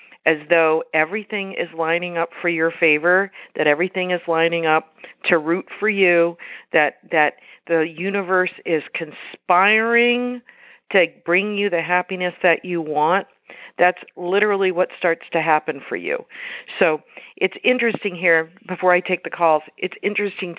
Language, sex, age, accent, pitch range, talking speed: English, female, 50-69, American, 160-190 Hz, 150 wpm